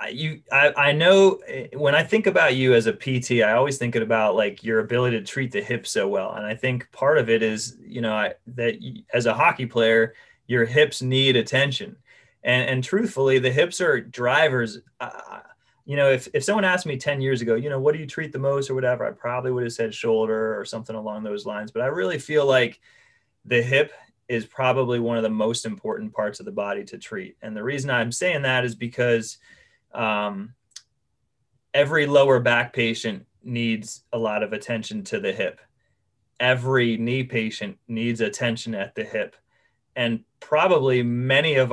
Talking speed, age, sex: 195 wpm, 30-49, male